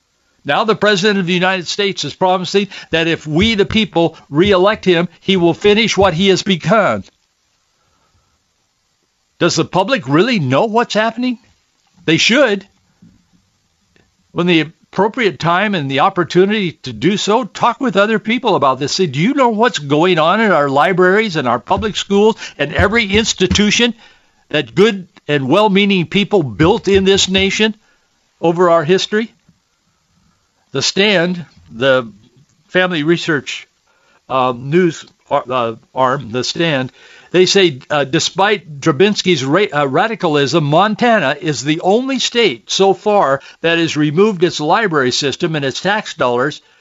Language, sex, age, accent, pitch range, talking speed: English, male, 60-79, American, 150-200 Hz, 145 wpm